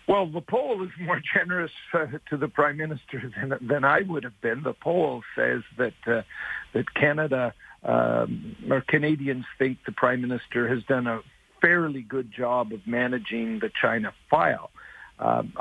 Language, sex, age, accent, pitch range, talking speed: English, male, 60-79, American, 125-150 Hz, 165 wpm